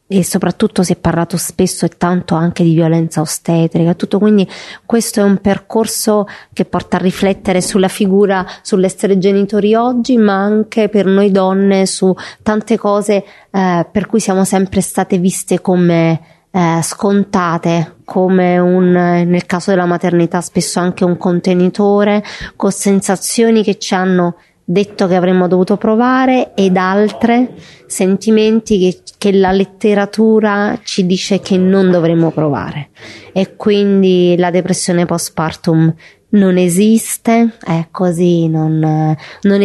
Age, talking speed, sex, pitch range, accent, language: 30-49, 135 wpm, female, 175-200 Hz, Italian, English